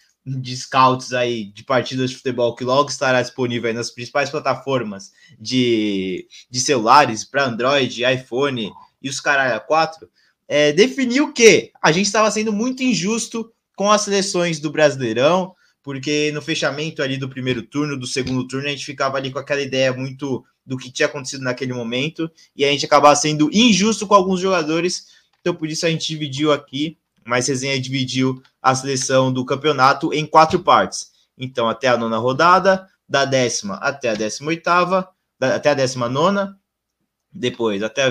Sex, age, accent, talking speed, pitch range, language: male, 20-39, Brazilian, 170 wpm, 130-170 Hz, Portuguese